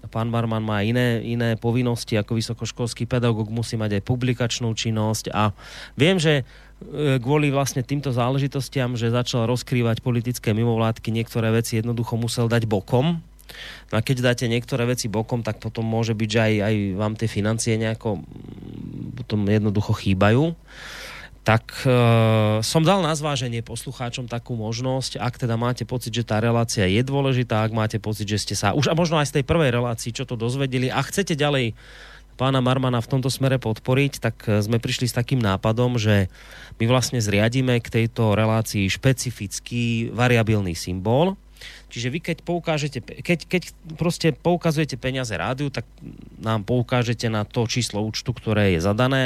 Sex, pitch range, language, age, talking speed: male, 110-130 Hz, Slovak, 30-49, 160 wpm